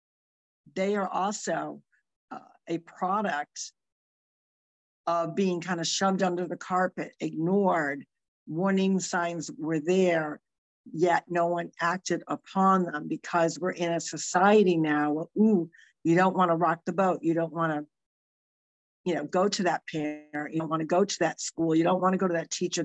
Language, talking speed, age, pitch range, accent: English, 175 wpm, 50-69, 160-180 Hz, American